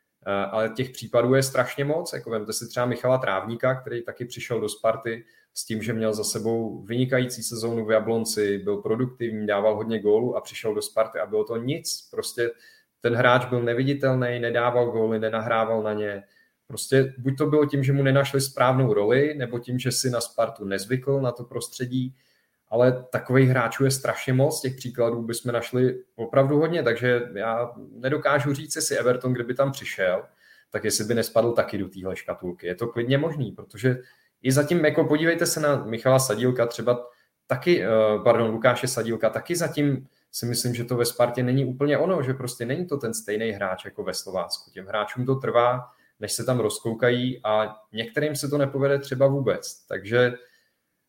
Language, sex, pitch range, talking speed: Czech, male, 115-135 Hz, 180 wpm